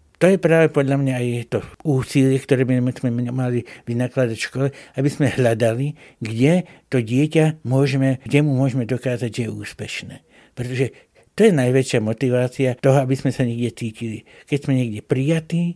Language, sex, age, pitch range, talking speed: Slovak, male, 60-79, 115-135 Hz, 170 wpm